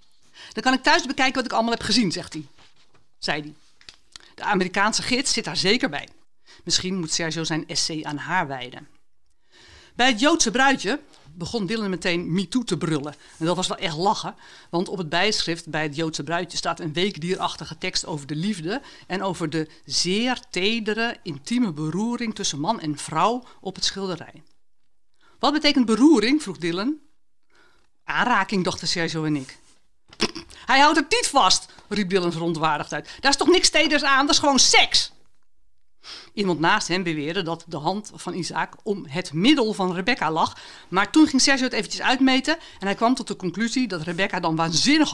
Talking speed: 180 wpm